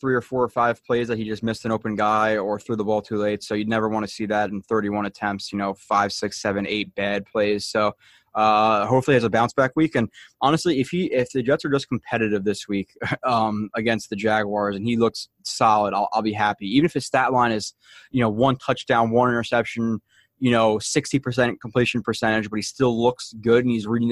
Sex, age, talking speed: male, 20-39, 235 wpm